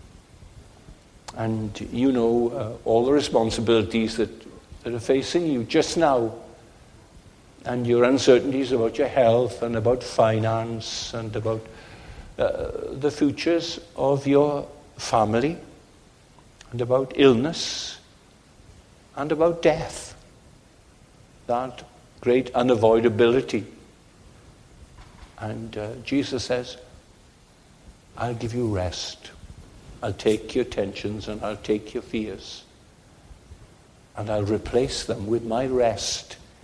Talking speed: 105 wpm